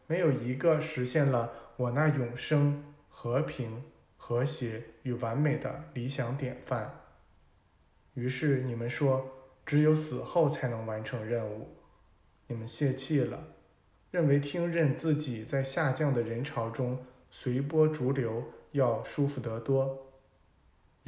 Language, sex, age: Chinese, male, 20-39